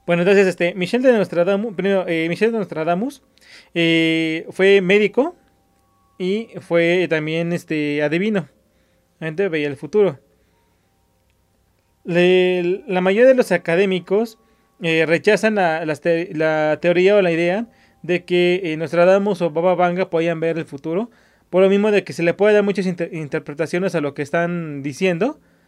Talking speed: 135 wpm